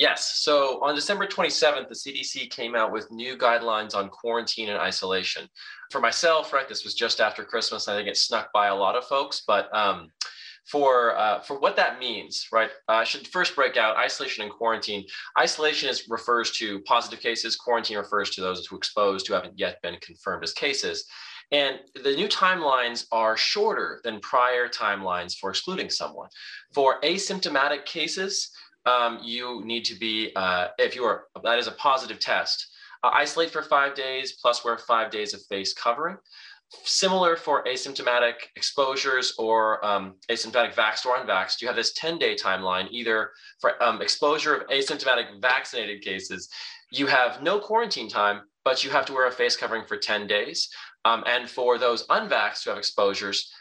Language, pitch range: English, 110-145 Hz